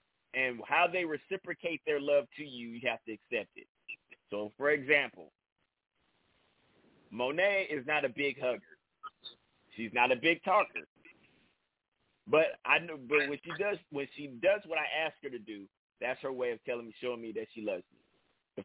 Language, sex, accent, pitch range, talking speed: English, male, American, 120-150 Hz, 180 wpm